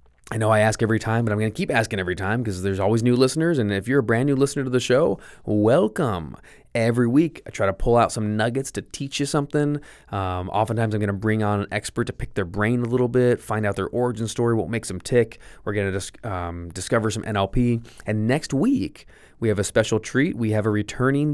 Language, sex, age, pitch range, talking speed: English, male, 20-39, 95-115 Hz, 245 wpm